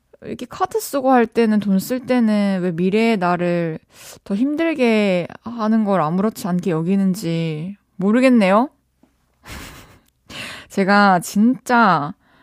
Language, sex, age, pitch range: Korean, female, 20-39, 185-250 Hz